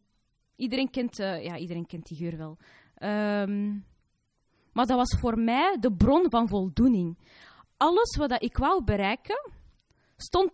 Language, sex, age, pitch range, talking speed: Dutch, female, 20-39, 205-265 Hz, 150 wpm